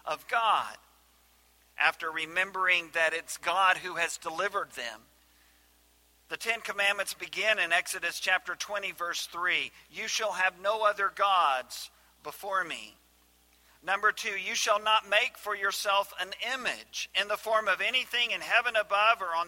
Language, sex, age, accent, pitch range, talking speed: English, male, 50-69, American, 145-210 Hz, 150 wpm